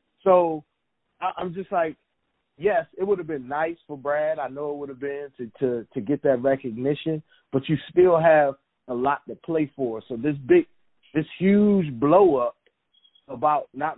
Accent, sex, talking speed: American, male, 180 wpm